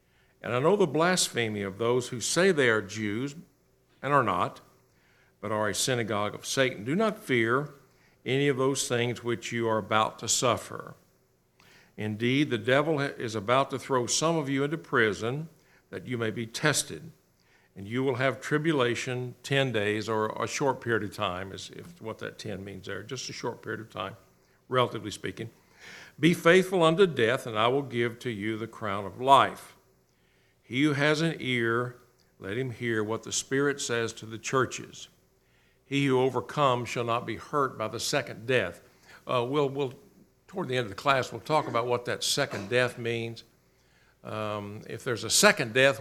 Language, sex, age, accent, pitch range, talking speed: English, male, 60-79, American, 115-140 Hz, 180 wpm